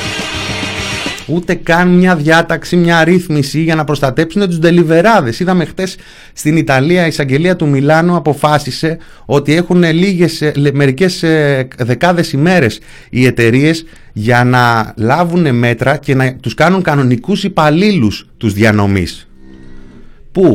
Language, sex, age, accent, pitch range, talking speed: Greek, male, 30-49, native, 110-170 Hz, 120 wpm